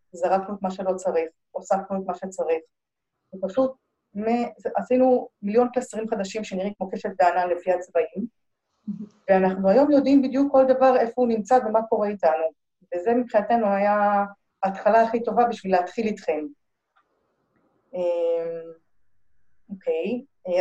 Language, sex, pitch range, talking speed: Hebrew, female, 175-230 Hz, 120 wpm